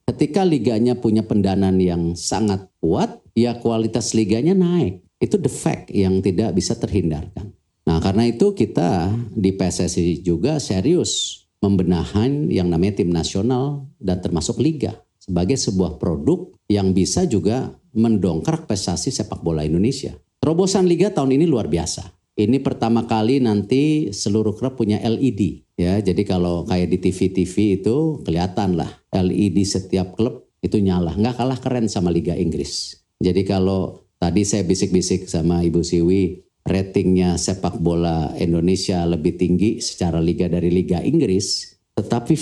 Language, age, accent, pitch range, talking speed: Indonesian, 40-59, native, 90-115 Hz, 140 wpm